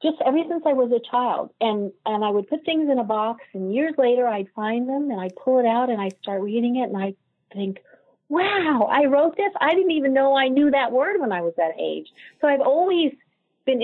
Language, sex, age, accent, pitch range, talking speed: English, female, 50-69, American, 195-255 Hz, 245 wpm